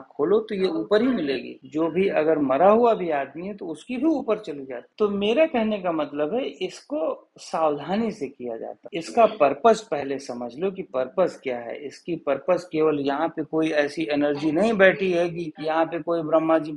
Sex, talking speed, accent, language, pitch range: male, 210 wpm, native, Hindi, 150-215 Hz